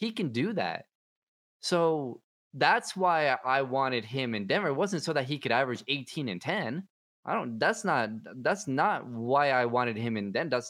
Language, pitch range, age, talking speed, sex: English, 110-145 Hz, 20-39, 195 wpm, male